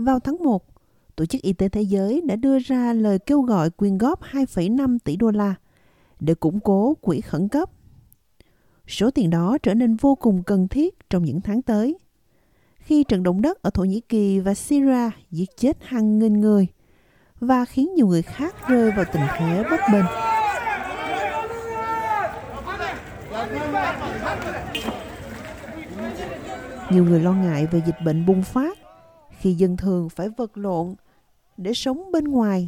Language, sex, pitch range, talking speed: Vietnamese, female, 185-255 Hz, 155 wpm